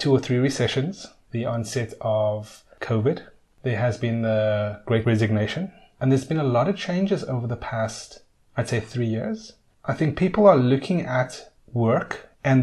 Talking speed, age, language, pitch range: 170 wpm, 30-49, English, 115-145 Hz